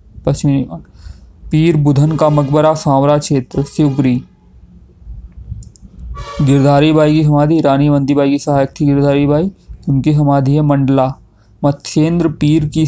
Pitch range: 130-150 Hz